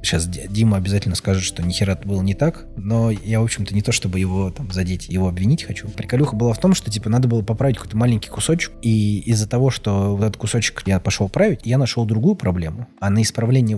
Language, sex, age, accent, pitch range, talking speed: Russian, male, 20-39, native, 95-120 Hz, 225 wpm